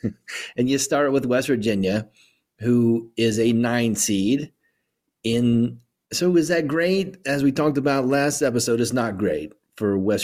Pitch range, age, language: 100-135 Hz, 30-49, English